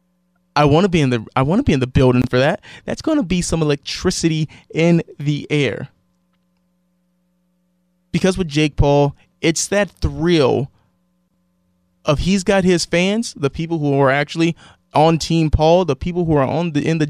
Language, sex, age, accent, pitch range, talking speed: English, male, 20-39, American, 140-180 Hz, 170 wpm